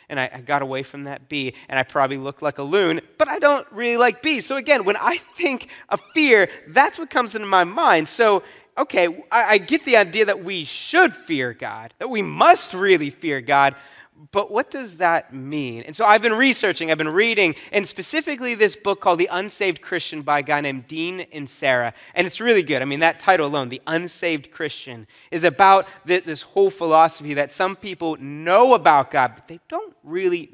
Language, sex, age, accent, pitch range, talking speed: English, male, 30-49, American, 145-225 Hz, 205 wpm